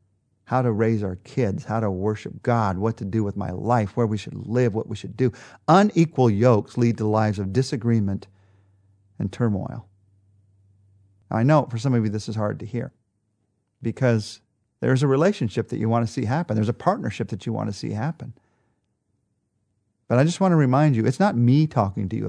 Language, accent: English, American